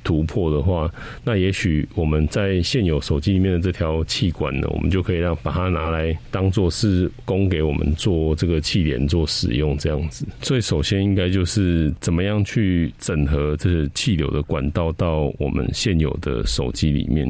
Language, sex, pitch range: Chinese, male, 75-95 Hz